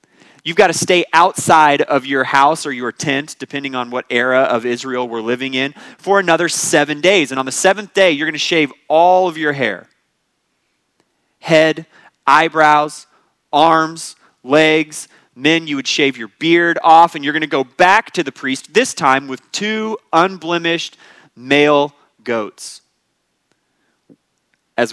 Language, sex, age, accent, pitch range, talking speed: English, male, 30-49, American, 120-160 Hz, 155 wpm